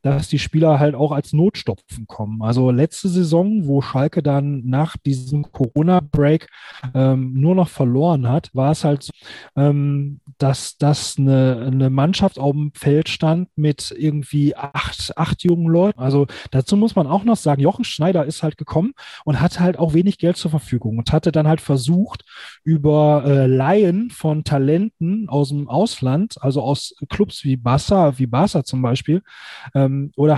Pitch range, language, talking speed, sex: 140-170 Hz, German, 170 wpm, male